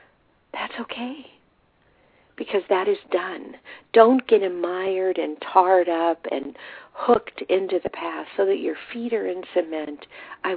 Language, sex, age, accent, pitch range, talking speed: English, female, 50-69, American, 165-235 Hz, 140 wpm